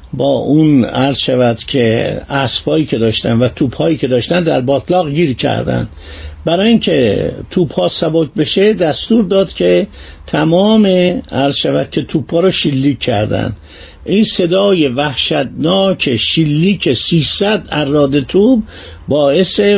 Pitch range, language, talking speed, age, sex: 135-180 Hz, Persian, 125 wpm, 50-69, male